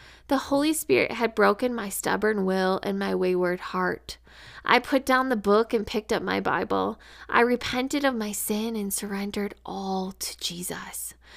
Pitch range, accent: 180-235 Hz, American